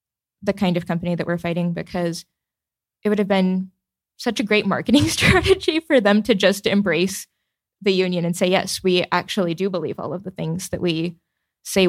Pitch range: 170-195 Hz